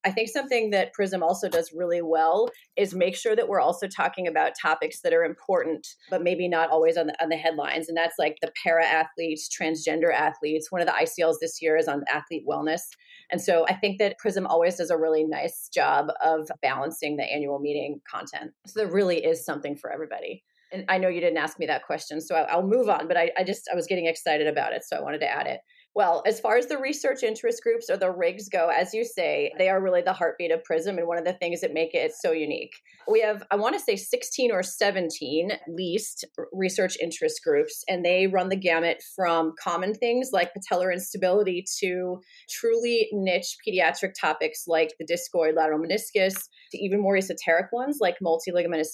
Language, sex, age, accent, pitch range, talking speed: English, female, 30-49, American, 165-210 Hz, 215 wpm